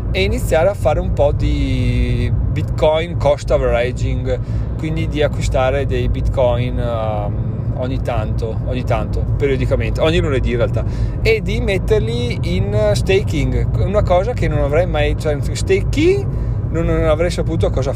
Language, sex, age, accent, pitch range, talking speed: Italian, male, 30-49, native, 115-130 Hz, 140 wpm